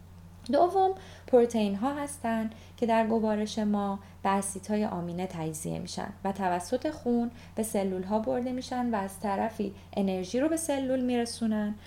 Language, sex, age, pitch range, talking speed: Persian, female, 20-39, 175-225 Hz, 145 wpm